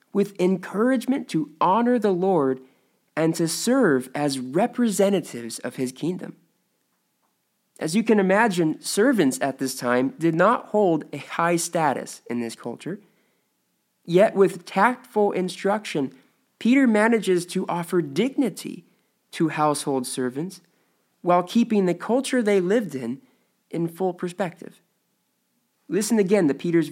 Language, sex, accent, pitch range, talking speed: English, male, American, 145-210 Hz, 125 wpm